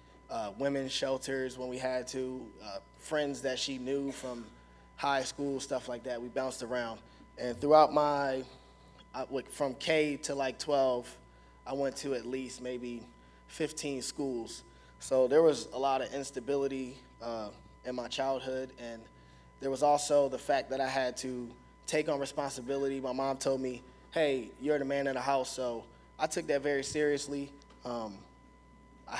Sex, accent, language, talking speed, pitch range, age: male, American, English, 165 wpm, 120-140 Hz, 20-39